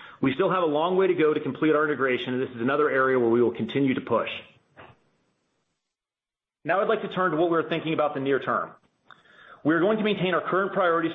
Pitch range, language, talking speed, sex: 135-165 Hz, English, 230 wpm, male